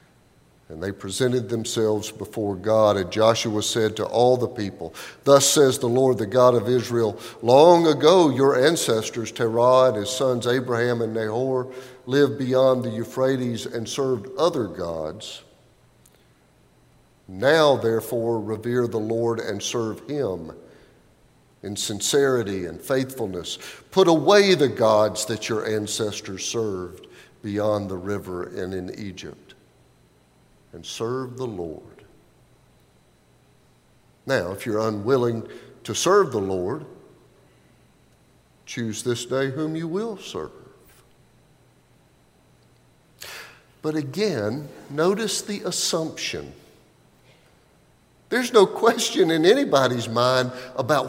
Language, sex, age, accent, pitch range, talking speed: English, male, 50-69, American, 110-140 Hz, 115 wpm